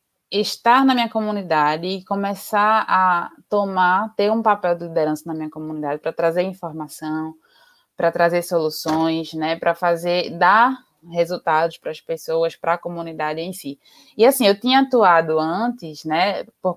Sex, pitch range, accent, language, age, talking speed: female, 170-220 Hz, Brazilian, Portuguese, 20-39, 155 wpm